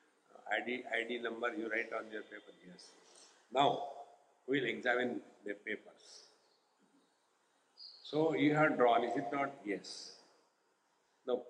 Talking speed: 120 wpm